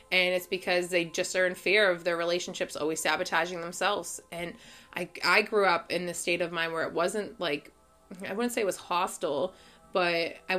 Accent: American